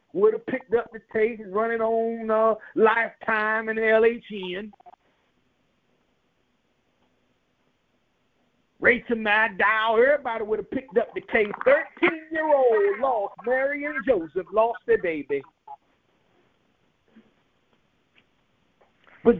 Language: English